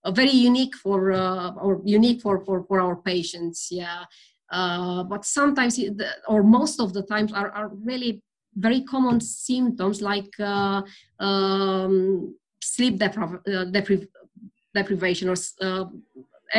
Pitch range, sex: 185-220 Hz, female